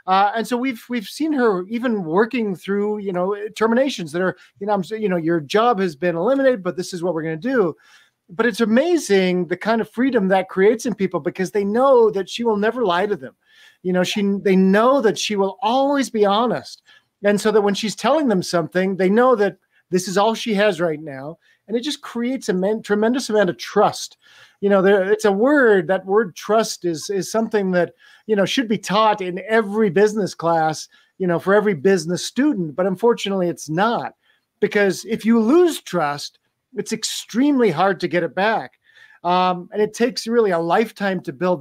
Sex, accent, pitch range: male, American, 180-225 Hz